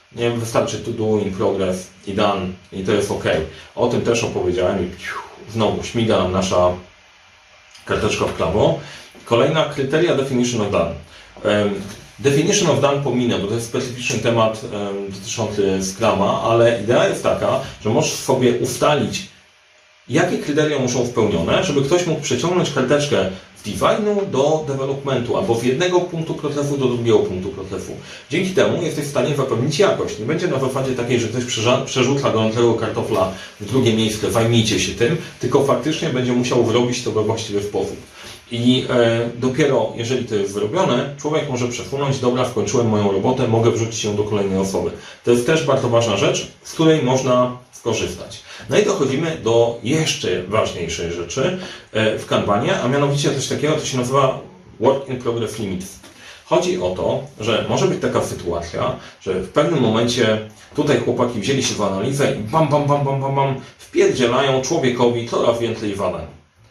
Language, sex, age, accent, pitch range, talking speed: Polish, male, 30-49, native, 110-140 Hz, 160 wpm